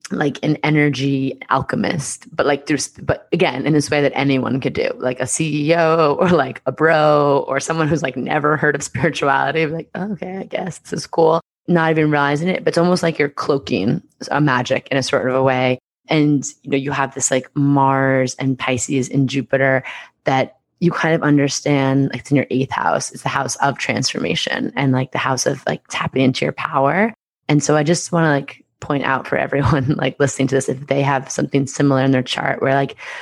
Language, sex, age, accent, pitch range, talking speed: English, female, 20-39, American, 135-160 Hz, 220 wpm